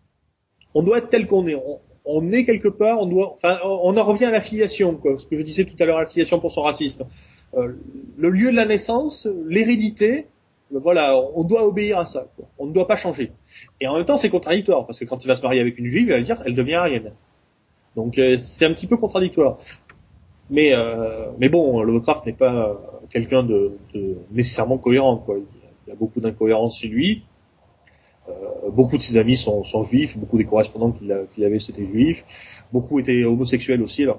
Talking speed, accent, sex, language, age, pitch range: 210 wpm, French, male, French, 30-49, 115-175 Hz